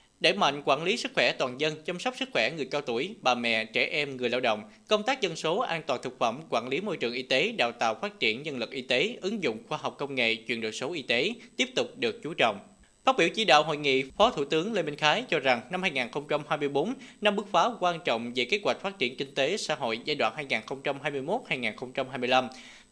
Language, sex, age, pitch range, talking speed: Vietnamese, male, 20-39, 130-205 Hz, 245 wpm